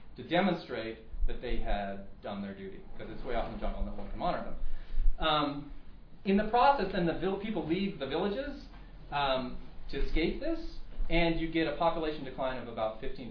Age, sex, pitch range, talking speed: 30-49, male, 105-175 Hz, 200 wpm